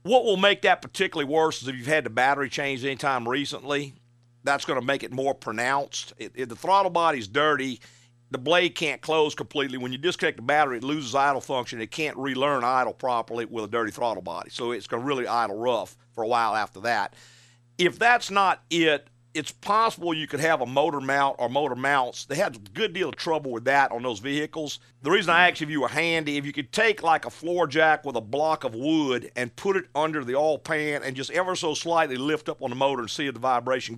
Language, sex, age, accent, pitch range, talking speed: English, male, 50-69, American, 125-155 Hz, 235 wpm